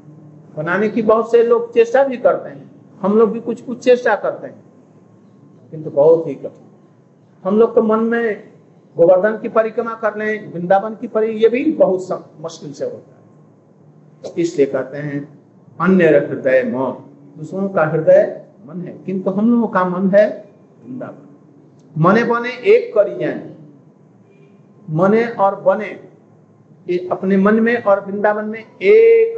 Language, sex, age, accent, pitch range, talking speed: Hindi, male, 50-69, native, 180-230 Hz, 155 wpm